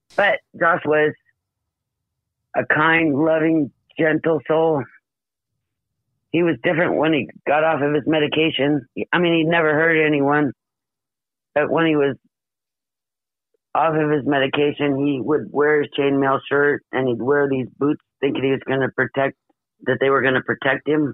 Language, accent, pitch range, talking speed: English, American, 135-155 Hz, 160 wpm